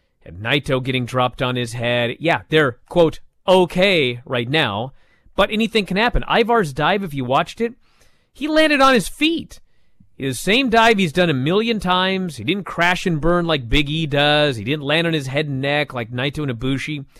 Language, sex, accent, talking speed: English, male, American, 200 wpm